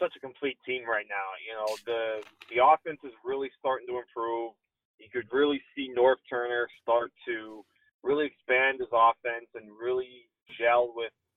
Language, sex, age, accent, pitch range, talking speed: English, male, 30-49, American, 115-145 Hz, 170 wpm